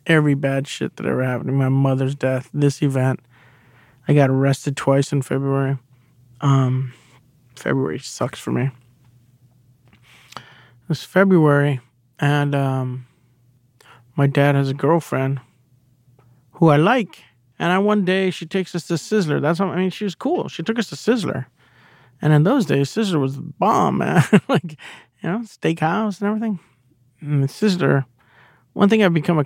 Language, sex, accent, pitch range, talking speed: English, male, American, 125-160 Hz, 160 wpm